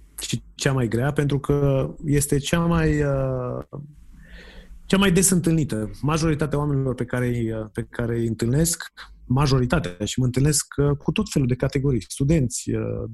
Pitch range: 120-155 Hz